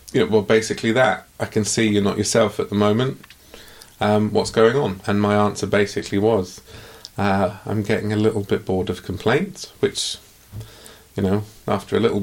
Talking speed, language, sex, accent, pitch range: 175 wpm, English, male, British, 100-110 Hz